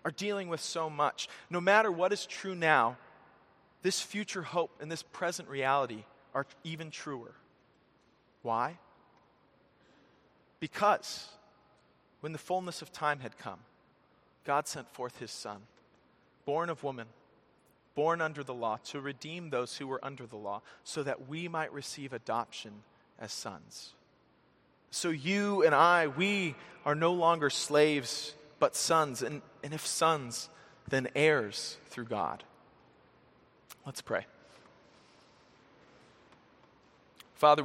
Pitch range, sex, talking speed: 125-165 Hz, male, 125 wpm